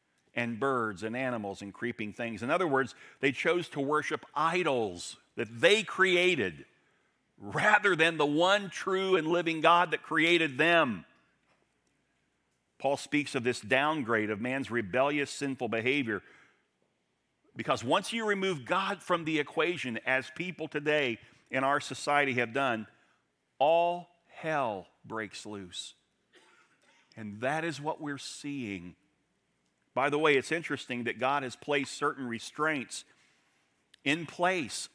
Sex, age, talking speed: male, 50-69, 135 wpm